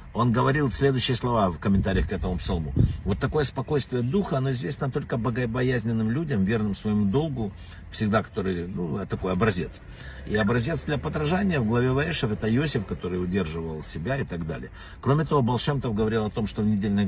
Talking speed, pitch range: 175 wpm, 95-135 Hz